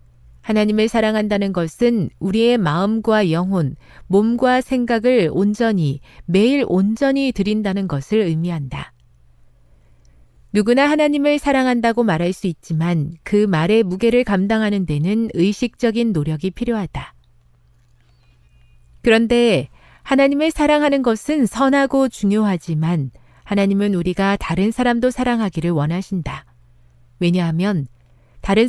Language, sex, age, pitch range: Korean, female, 40-59, 155-225 Hz